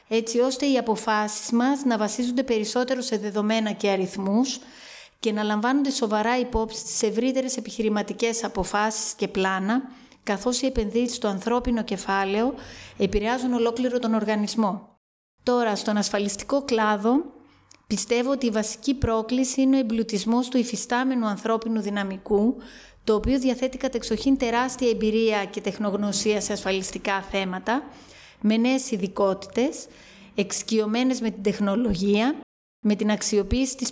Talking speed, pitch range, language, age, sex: 125 wpm, 210-250 Hz, Greek, 30-49, female